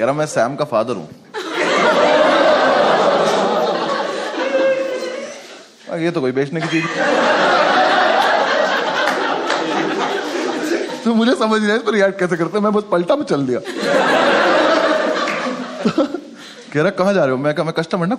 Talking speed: 120 wpm